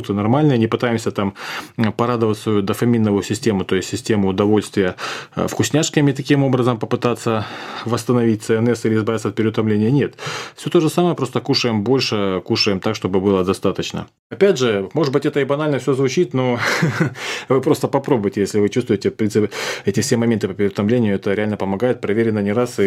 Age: 20-39